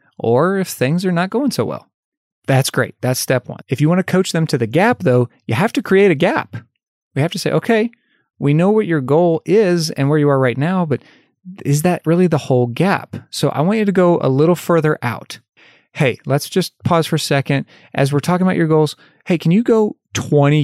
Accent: American